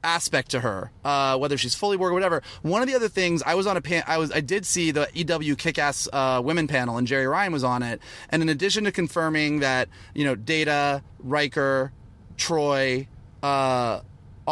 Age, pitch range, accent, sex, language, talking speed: 30-49, 130-160 Hz, American, male, English, 205 wpm